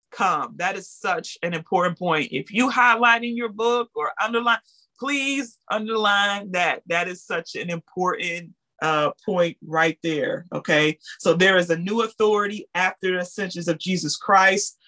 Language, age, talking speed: English, 30-49, 160 wpm